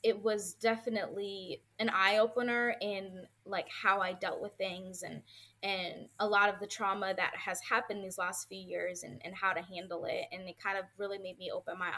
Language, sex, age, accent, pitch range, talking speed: English, female, 20-39, American, 185-220 Hz, 210 wpm